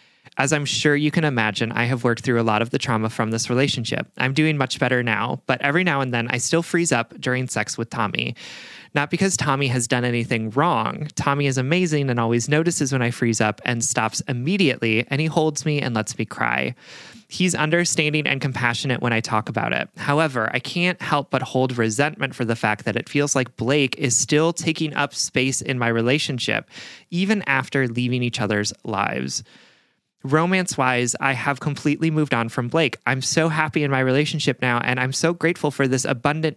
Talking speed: 205 wpm